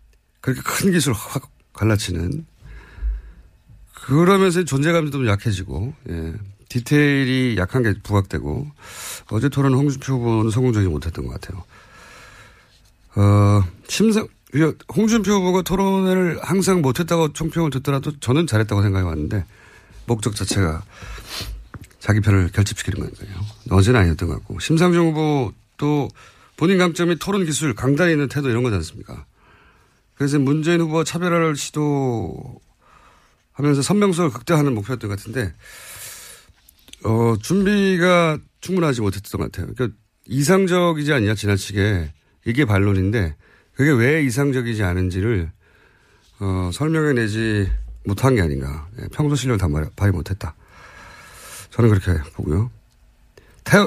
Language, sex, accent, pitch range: Korean, male, native, 100-155 Hz